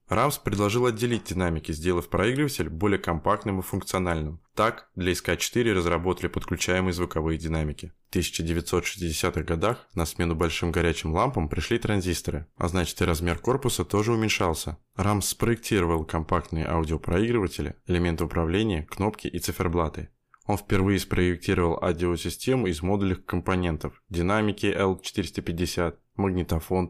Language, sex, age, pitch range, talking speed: Russian, male, 20-39, 85-100 Hz, 120 wpm